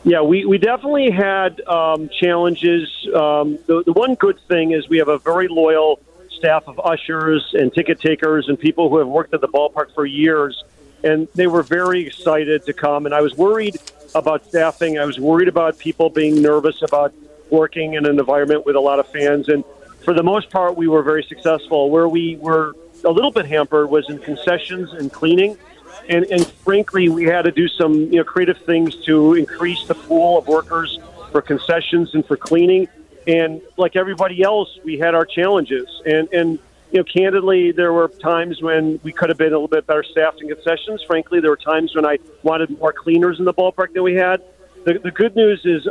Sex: male